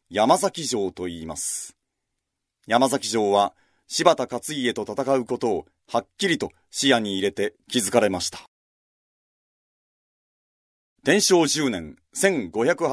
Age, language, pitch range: 40-59, Japanese, 115-160 Hz